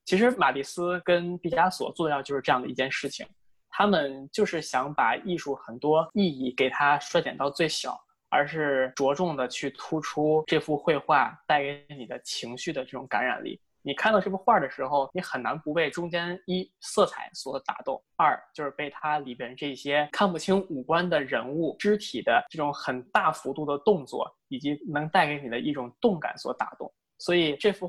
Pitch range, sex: 140-180 Hz, male